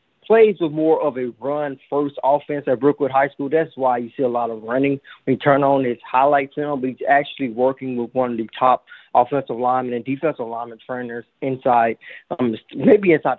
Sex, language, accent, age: male, English, American, 20-39